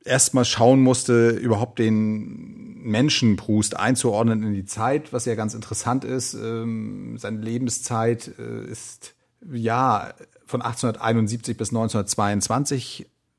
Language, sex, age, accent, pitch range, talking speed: German, male, 40-59, German, 105-125 Hz, 105 wpm